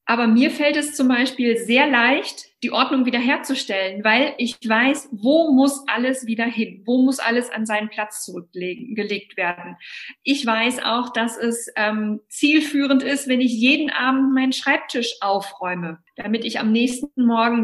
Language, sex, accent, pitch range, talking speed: German, female, German, 220-265 Hz, 160 wpm